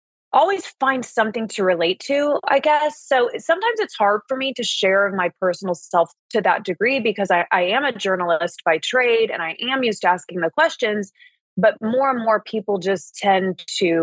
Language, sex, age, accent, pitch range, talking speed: English, female, 20-39, American, 195-290 Hz, 195 wpm